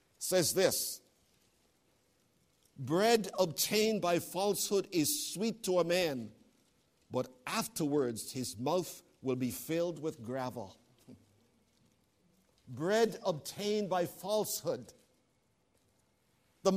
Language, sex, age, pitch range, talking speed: English, male, 50-69, 160-215 Hz, 90 wpm